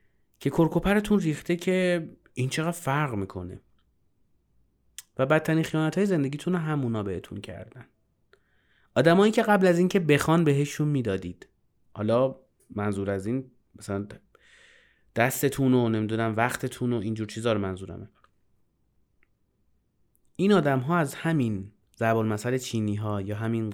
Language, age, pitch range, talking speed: Persian, 30-49, 110-160 Hz, 125 wpm